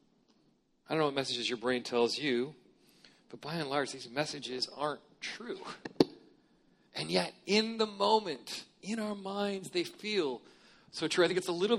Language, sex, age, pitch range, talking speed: English, male, 40-59, 130-170 Hz, 175 wpm